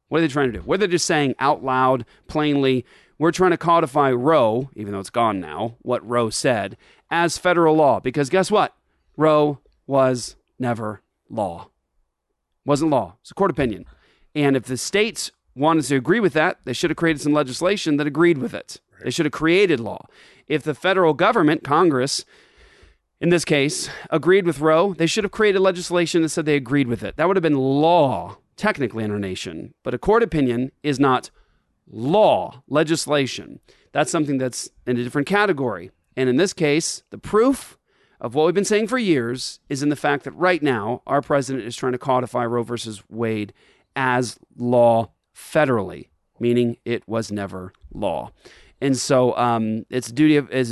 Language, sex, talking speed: English, male, 185 wpm